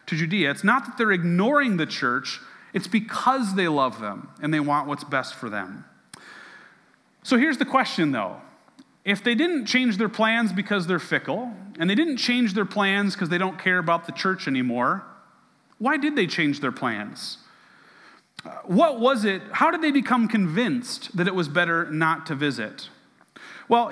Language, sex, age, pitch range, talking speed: English, male, 30-49, 175-240 Hz, 175 wpm